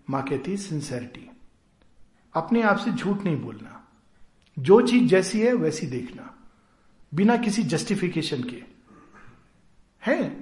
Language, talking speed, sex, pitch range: Hindi, 100 wpm, male, 165-235 Hz